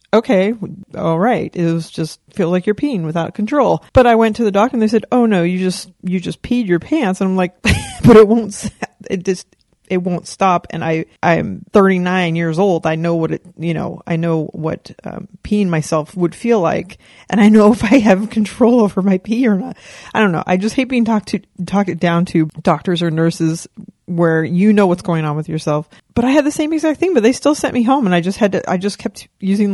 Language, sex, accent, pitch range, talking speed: English, female, American, 170-210 Hz, 240 wpm